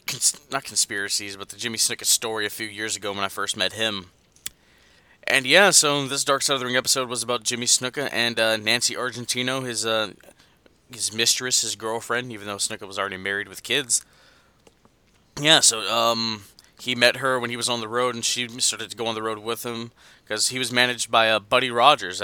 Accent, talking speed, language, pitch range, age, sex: American, 215 wpm, English, 105-125 Hz, 20-39, male